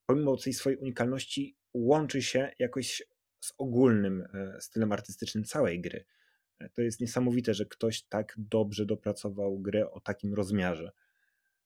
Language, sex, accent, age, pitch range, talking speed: Polish, male, native, 30-49, 95-115 Hz, 130 wpm